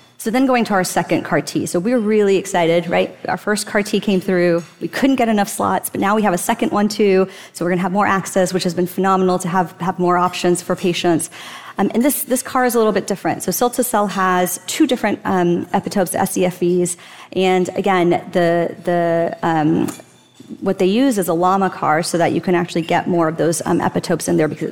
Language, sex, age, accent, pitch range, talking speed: English, female, 30-49, American, 175-205 Hz, 230 wpm